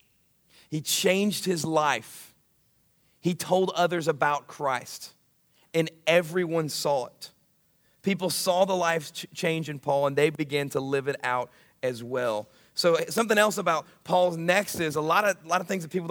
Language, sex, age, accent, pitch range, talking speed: English, male, 40-59, American, 145-180 Hz, 160 wpm